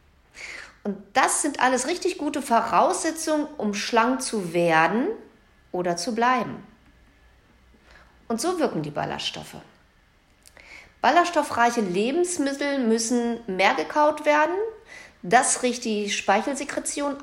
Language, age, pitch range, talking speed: German, 50-69, 200-270 Hz, 100 wpm